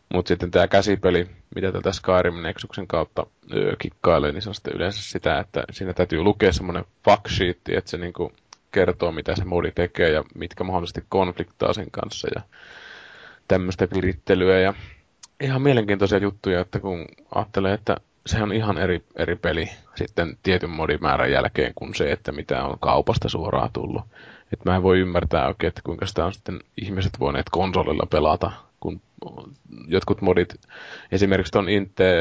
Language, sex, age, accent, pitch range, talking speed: Finnish, male, 20-39, native, 90-100 Hz, 160 wpm